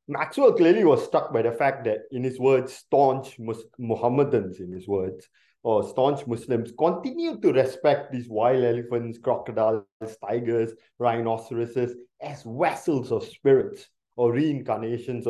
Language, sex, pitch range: English, male, 120-175 Hz